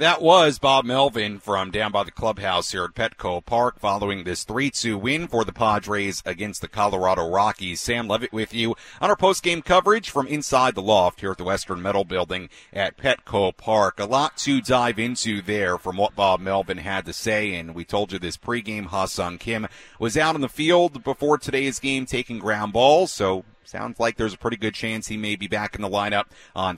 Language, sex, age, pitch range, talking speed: English, male, 40-59, 95-120 Hz, 210 wpm